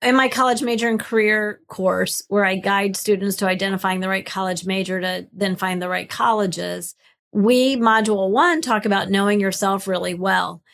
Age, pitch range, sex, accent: 40-59, 195-255 Hz, female, American